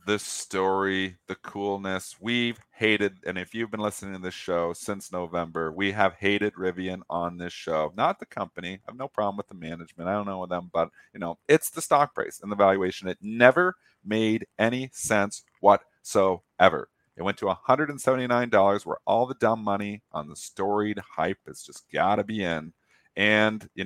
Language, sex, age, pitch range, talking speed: English, male, 40-59, 95-125 Hz, 190 wpm